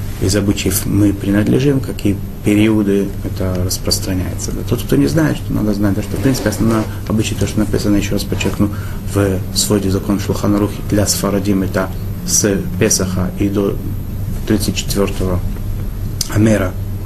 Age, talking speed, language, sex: 30-49, 140 wpm, Russian, male